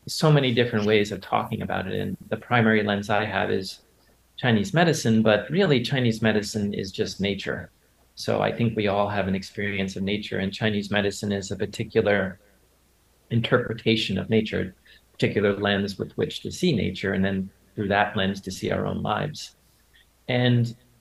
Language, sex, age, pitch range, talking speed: English, male, 40-59, 100-150 Hz, 175 wpm